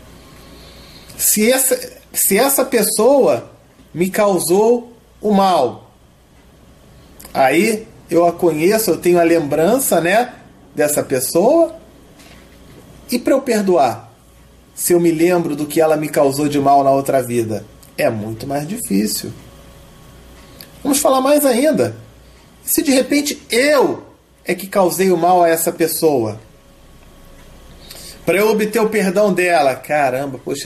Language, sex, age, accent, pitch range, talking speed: Portuguese, male, 40-59, Brazilian, 145-210 Hz, 125 wpm